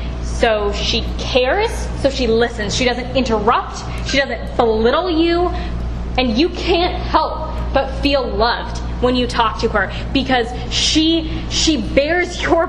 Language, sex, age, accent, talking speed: English, female, 10-29, American, 140 wpm